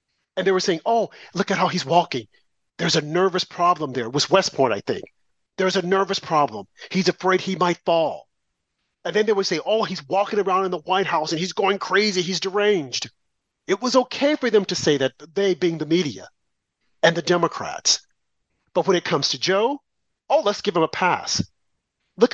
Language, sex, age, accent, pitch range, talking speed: English, male, 40-59, American, 160-210 Hz, 205 wpm